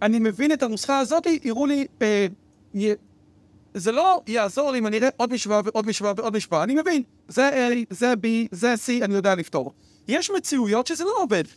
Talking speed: 195 wpm